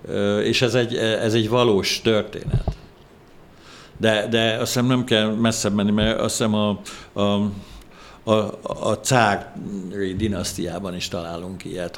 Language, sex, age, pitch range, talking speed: Hungarian, male, 60-79, 90-110 Hz, 135 wpm